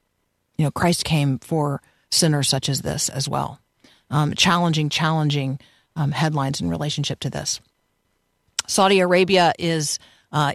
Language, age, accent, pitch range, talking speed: English, 50-69, American, 160-185 Hz, 135 wpm